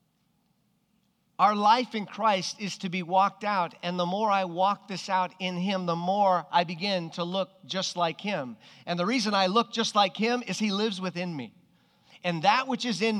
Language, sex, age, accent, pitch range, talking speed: English, male, 40-59, American, 165-205 Hz, 205 wpm